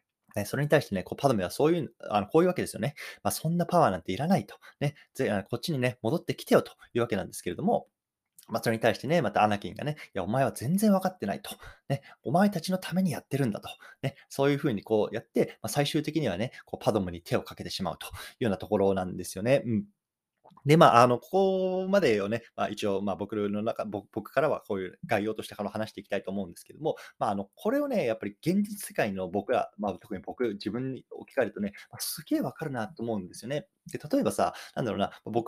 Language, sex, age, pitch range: Japanese, male, 20-39, 100-155 Hz